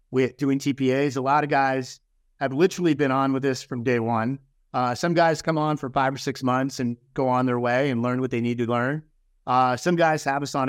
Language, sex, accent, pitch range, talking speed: English, male, American, 130-160 Hz, 240 wpm